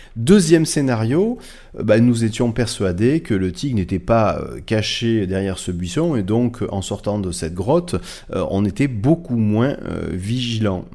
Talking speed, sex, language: 150 wpm, male, French